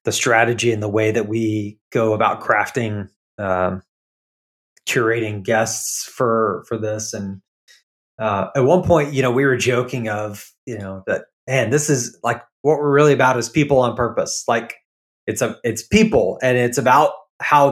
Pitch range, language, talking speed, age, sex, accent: 105-130 Hz, English, 175 wpm, 30-49, male, American